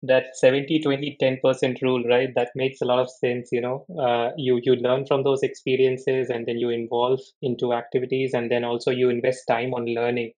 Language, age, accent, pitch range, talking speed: English, 20-39, Indian, 120-135 Hz, 200 wpm